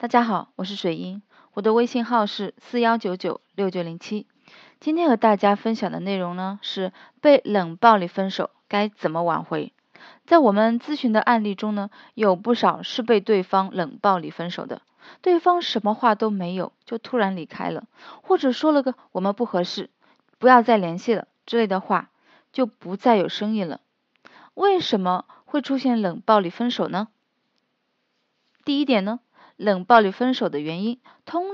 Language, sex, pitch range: Chinese, female, 195-275 Hz